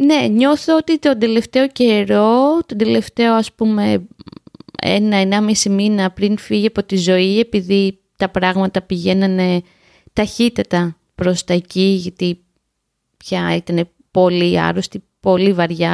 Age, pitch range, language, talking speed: 20-39, 185-245 Hz, Greek, 125 wpm